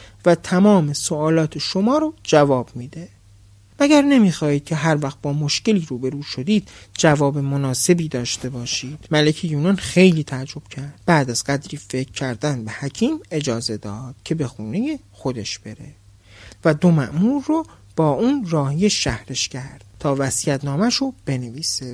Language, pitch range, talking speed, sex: Persian, 130-185 Hz, 140 wpm, male